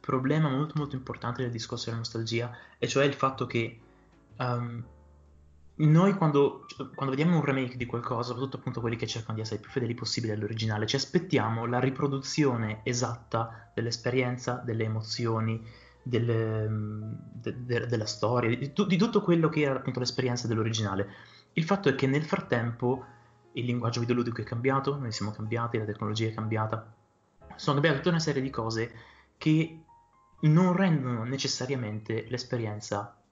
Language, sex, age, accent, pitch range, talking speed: Italian, male, 20-39, native, 110-135 Hz, 155 wpm